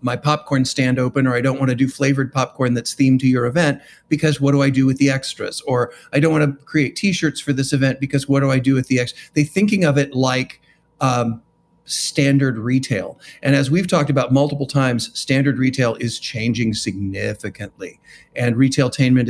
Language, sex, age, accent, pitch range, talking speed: English, male, 40-59, American, 130-155 Hz, 200 wpm